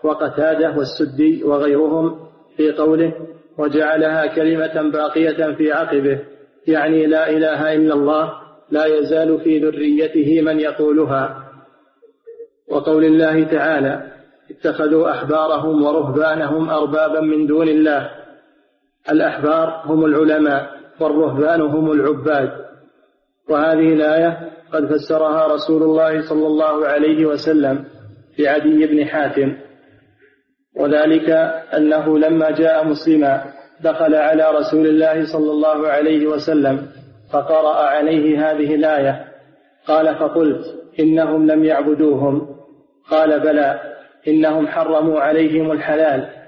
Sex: male